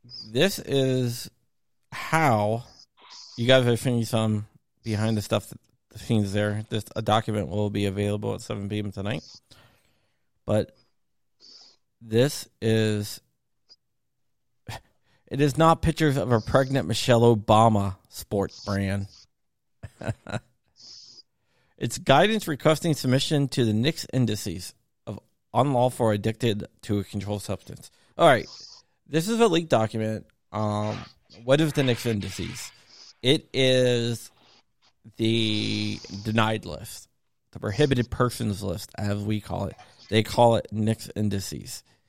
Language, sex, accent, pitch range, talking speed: English, male, American, 105-125 Hz, 125 wpm